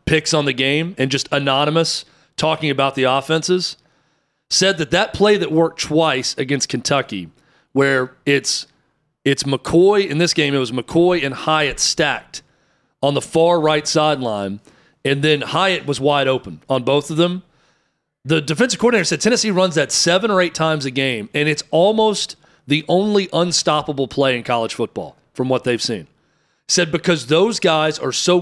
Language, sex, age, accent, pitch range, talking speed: English, male, 40-59, American, 135-170 Hz, 170 wpm